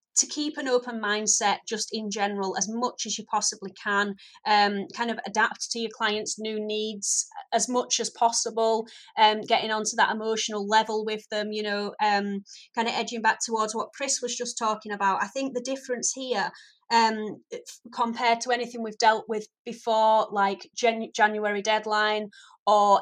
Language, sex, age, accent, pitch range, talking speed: English, female, 30-49, British, 210-240 Hz, 175 wpm